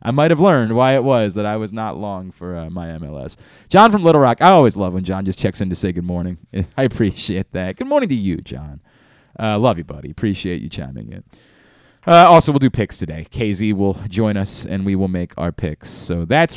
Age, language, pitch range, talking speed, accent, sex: 30-49, English, 105-155 Hz, 240 wpm, American, male